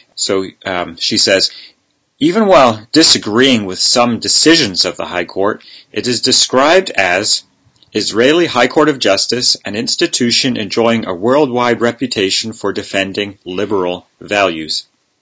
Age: 40-59